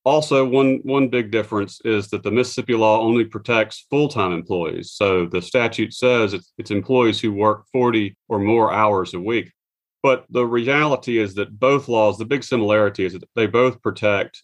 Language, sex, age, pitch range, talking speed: English, male, 40-59, 105-130 Hz, 185 wpm